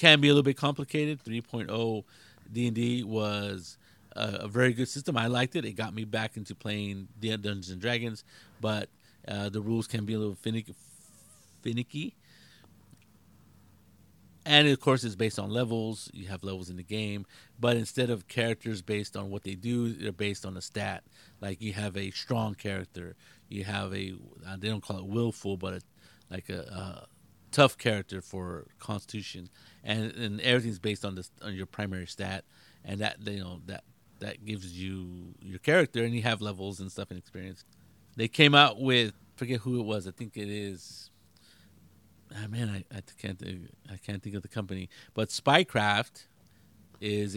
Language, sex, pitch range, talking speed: English, male, 95-115 Hz, 180 wpm